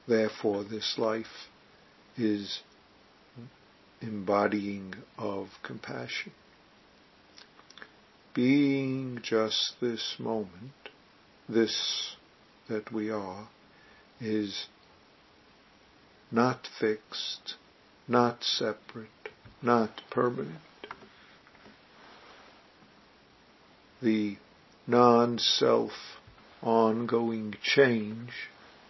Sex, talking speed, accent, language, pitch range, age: male, 55 wpm, American, English, 105-120 Hz, 60-79